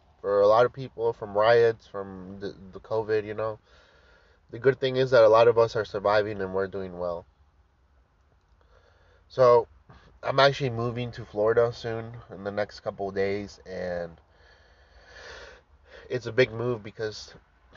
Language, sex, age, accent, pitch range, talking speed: English, male, 20-39, American, 95-115 Hz, 160 wpm